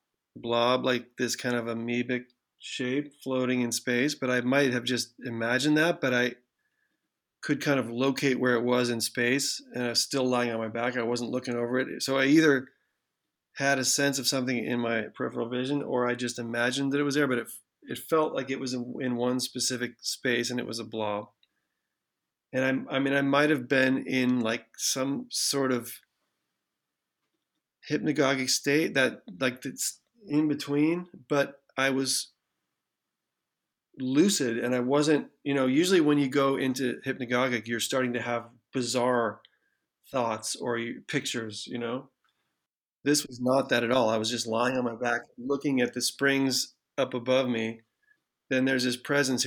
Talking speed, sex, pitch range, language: 175 wpm, male, 120-140 Hz, English